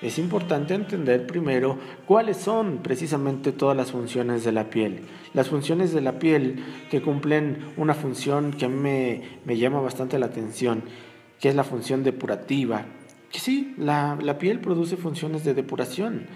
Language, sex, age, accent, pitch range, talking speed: Spanish, male, 40-59, Mexican, 130-160 Hz, 165 wpm